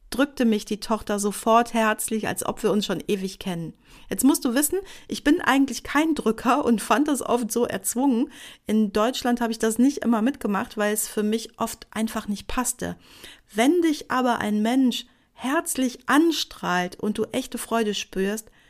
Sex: female